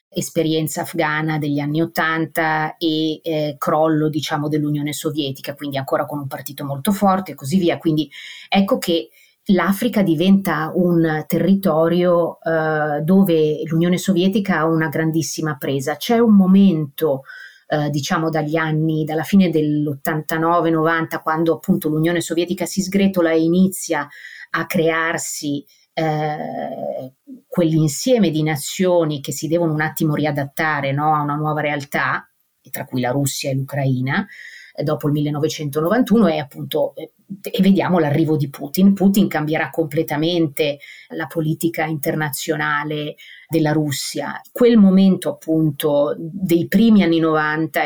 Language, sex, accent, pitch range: Italian, female, native, 150-170 Hz